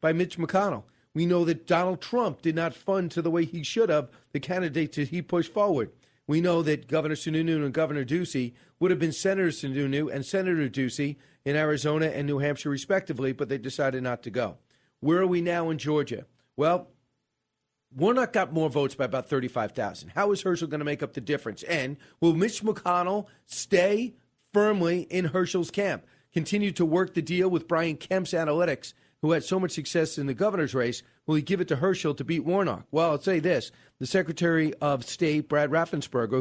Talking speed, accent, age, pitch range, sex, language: 200 wpm, American, 40-59, 140-175 Hz, male, English